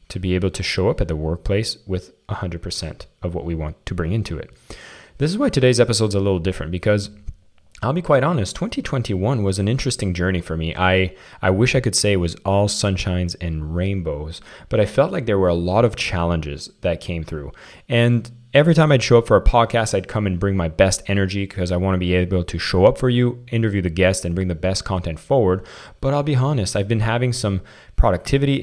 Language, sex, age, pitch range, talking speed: English, male, 30-49, 90-115 Hz, 235 wpm